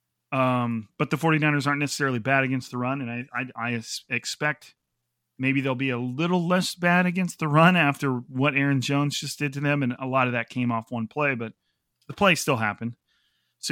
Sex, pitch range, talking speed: male, 120-150 Hz, 210 wpm